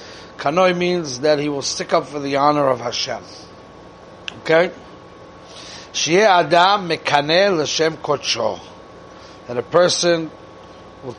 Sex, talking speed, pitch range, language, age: male, 100 wpm, 130-165 Hz, English, 30-49